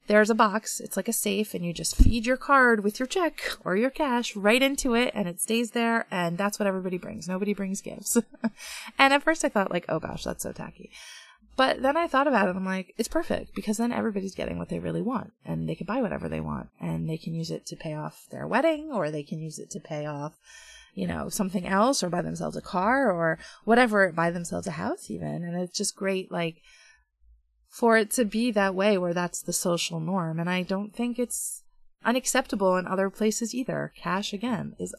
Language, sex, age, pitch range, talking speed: English, female, 20-39, 170-240 Hz, 230 wpm